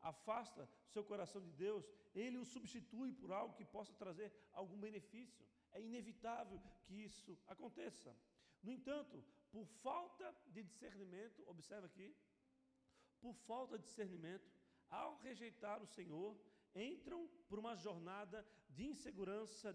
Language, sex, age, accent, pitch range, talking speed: Portuguese, male, 50-69, Brazilian, 200-240 Hz, 130 wpm